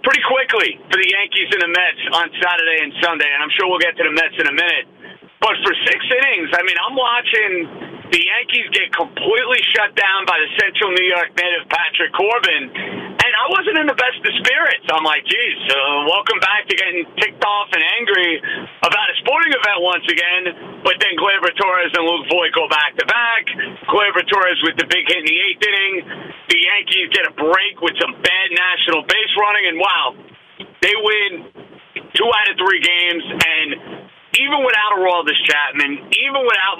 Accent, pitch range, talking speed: American, 175-275 Hz, 190 wpm